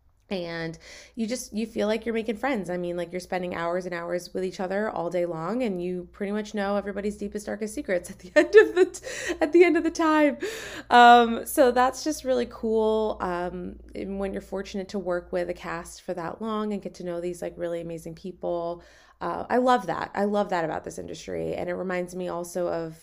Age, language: 20-39, English